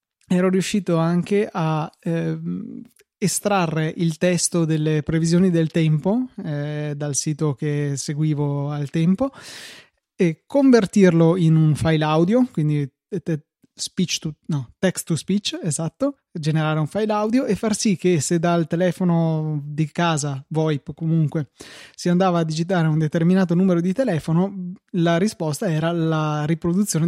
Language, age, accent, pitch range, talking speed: Italian, 20-39, native, 155-190 Hz, 135 wpm